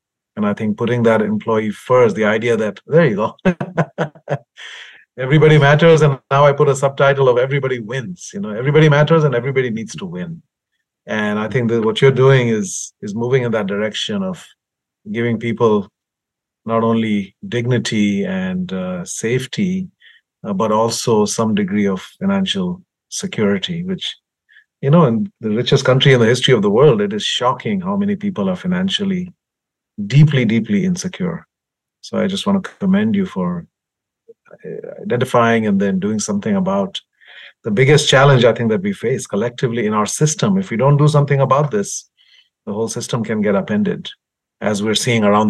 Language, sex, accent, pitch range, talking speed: English, male, Indian, 110-185 Hz, 170 wpm